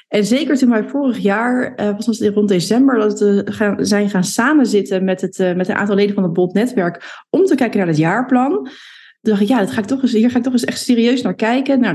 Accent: Dutch